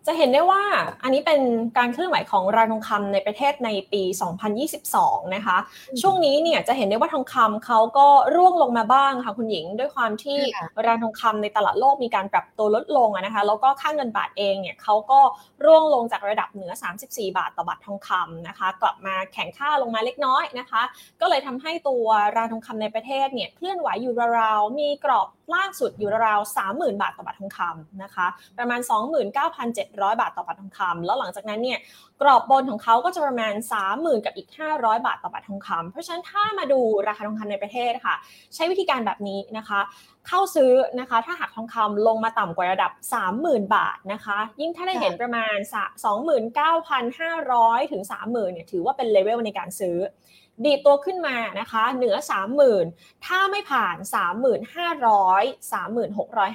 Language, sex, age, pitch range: Thai, female, 20-39, 205-285 Hz